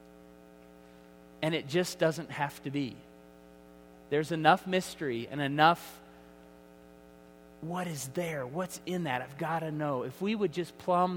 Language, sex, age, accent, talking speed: English, male, 30-49, American, 145 wpm